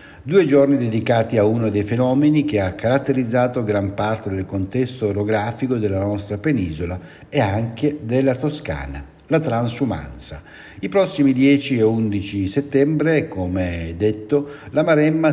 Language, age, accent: Italian, 60-79, native